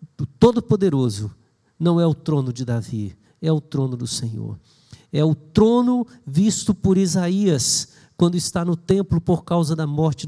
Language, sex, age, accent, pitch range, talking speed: Portuguese, male, 50-69, Brazilian, 150-205 Hz, 160 wpm